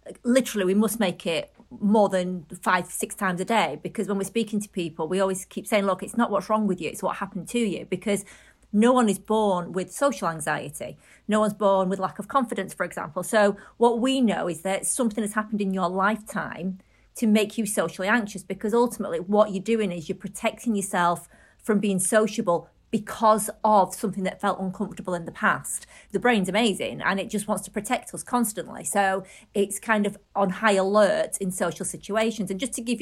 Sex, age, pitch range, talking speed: female, 30-49, 185-215 Hz, 205 wpm